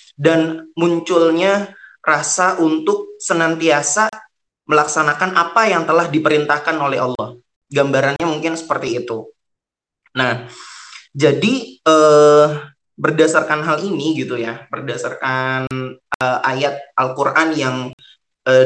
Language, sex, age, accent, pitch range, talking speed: Indonesian, male, 20-39, native, 135-165 Hz, 95 wpm